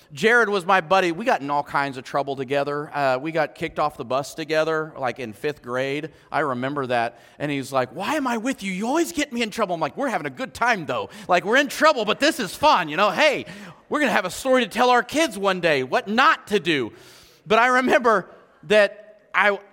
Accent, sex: American, male